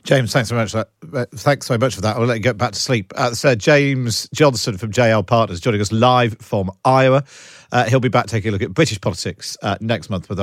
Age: 40-59